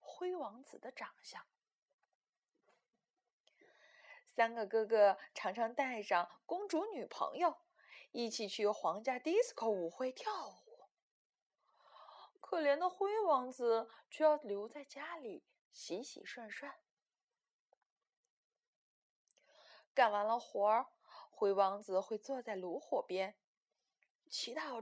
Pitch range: 230-355 Hz